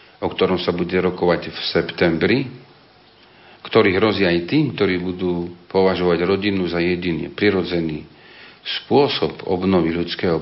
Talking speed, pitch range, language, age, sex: 120 wpm, 90-110 Hz, Slovak, 50-69, male